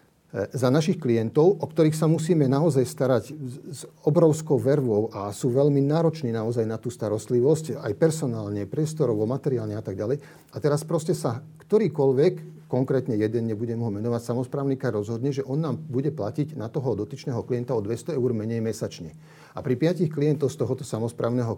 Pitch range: 115-150 Hz